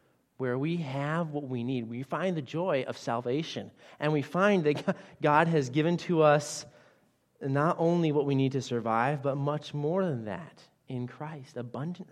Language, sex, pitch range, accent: English, male, 140-210 Hz, American